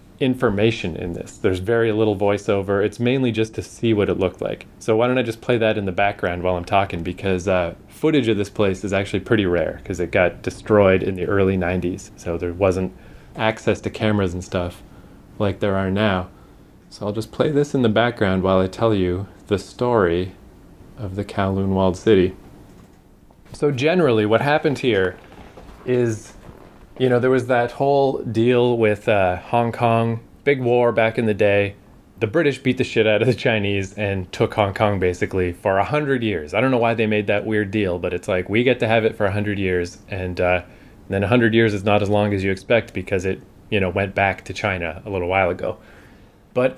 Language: English